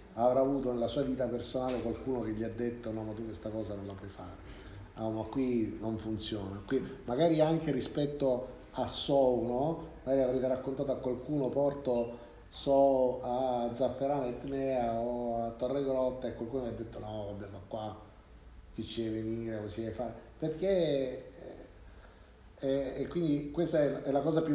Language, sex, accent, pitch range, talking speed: Italian, male, native, 115-135 Hz, 175 wpm